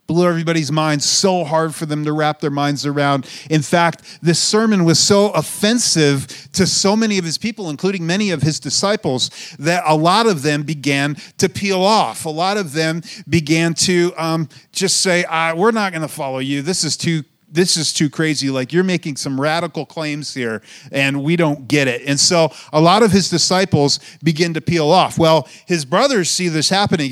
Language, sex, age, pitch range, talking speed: English, male, 40-59, 150-185 Hz, 200 wpm